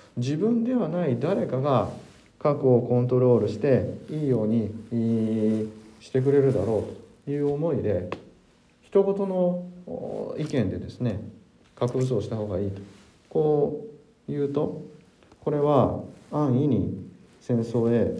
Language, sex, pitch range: Japanese, male, 100-135 Hz